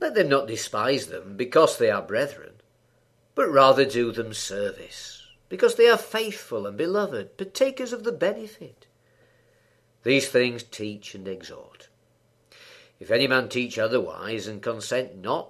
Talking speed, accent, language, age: 145 wpm, British, English, 50-69